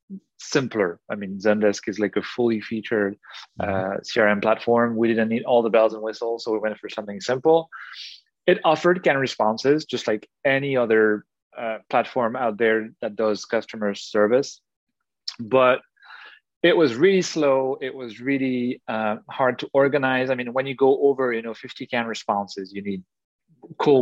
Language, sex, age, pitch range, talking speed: English, male, 30-49, 110-130 Hz, 170 wpm